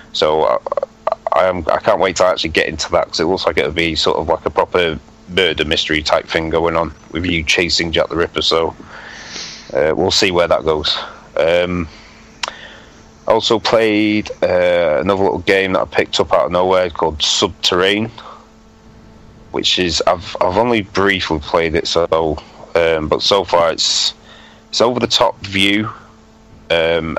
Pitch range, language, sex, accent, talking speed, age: 80-105 Hz, English, male, British, 170 wpm, 30-49